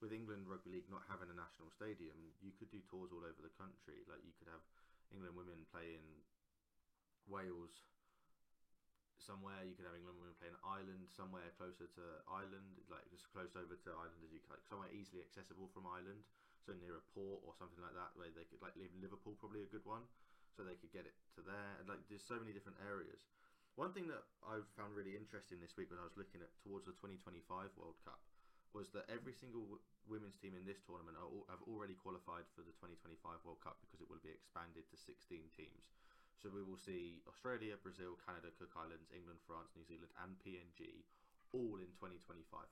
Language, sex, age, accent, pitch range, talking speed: English, male, 20-39, British, 85-100 Hz, 210 wpm